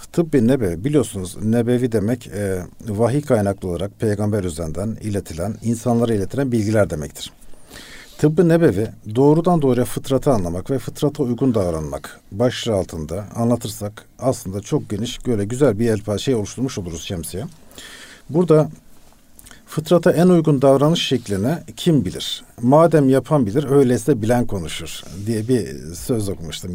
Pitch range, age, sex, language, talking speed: 100-145 Hz, 50-69, male, Turkish, 130 wpm